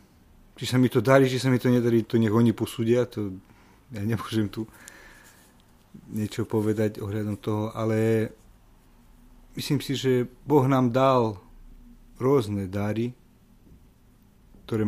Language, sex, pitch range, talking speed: Slovak, male, 105-130 Hz, 130 wpm